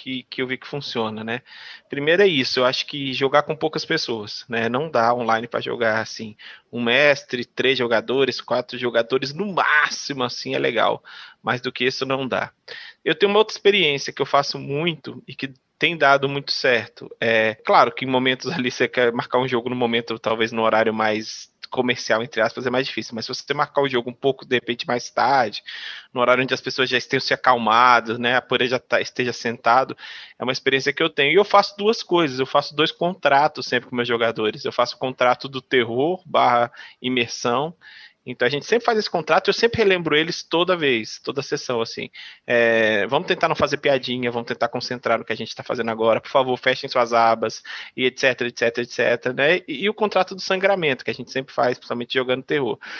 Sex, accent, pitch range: male, Brazilian, 120-155 Hz